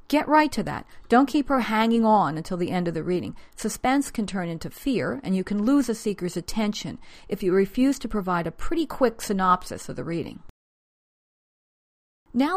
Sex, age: female, 40-59